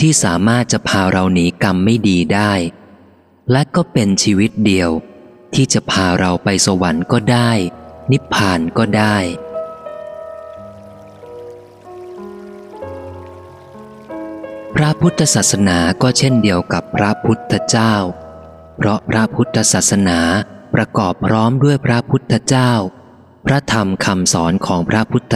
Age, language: 20-39, Thai